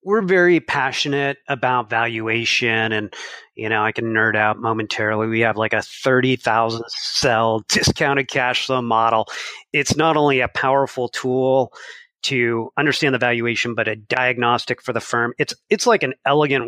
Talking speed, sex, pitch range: 160 wpm, male, 120-155 Hz